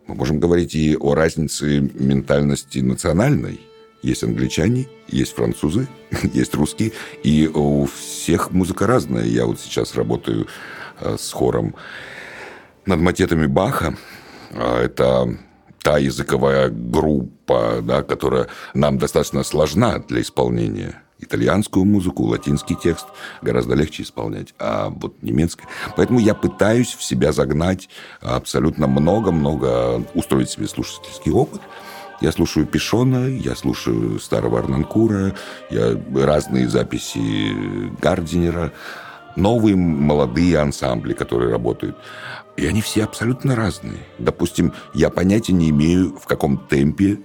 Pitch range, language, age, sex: 70-100 Hz, Russian, 60-79, male